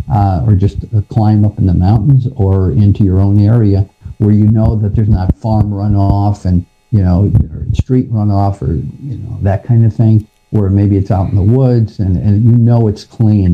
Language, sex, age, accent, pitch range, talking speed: English, male, 50-69, American, 100-115 Hz, 210 wpm